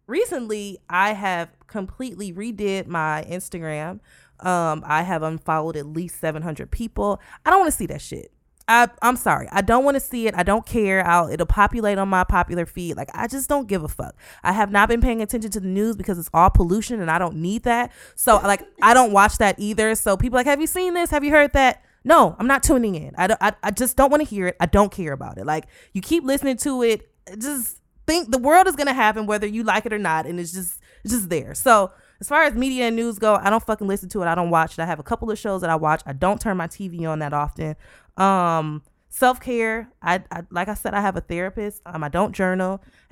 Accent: American